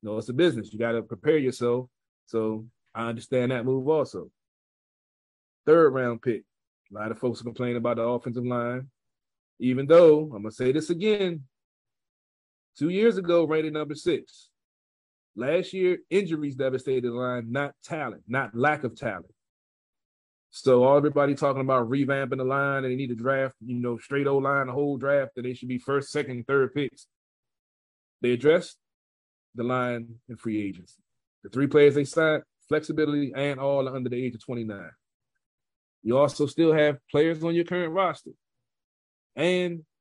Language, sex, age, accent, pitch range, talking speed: English, male, 30-49, American, 120-145 Hz, 170 wpm